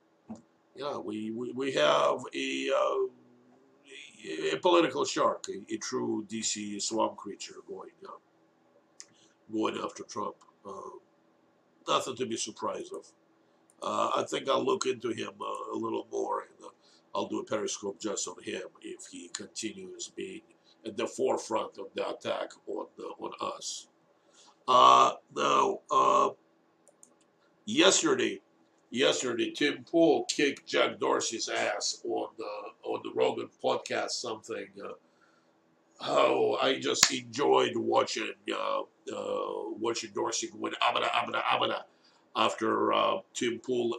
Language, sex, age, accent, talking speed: English, male, 50-69, American, 130 wpm